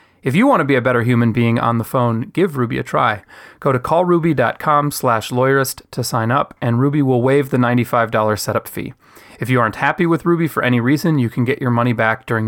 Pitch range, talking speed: 110-135 Hz, 230 wpm